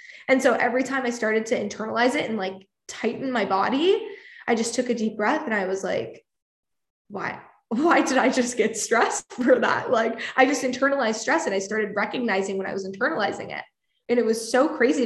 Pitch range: 215-260 Hz